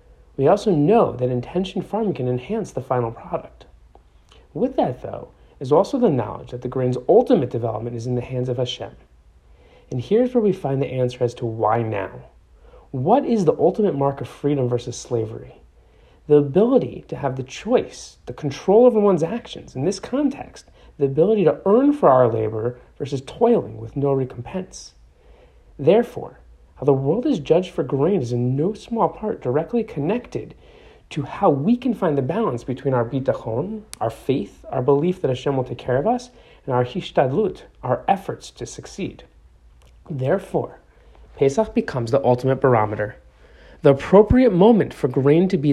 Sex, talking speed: male, 170 wpm